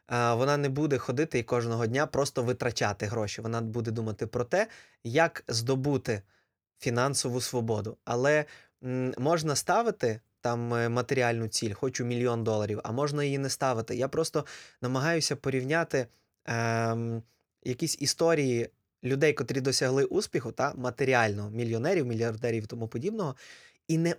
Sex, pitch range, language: male, 120-160 Hz, Ukrainian